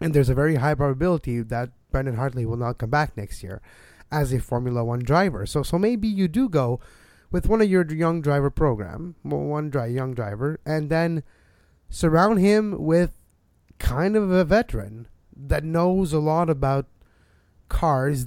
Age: 20-39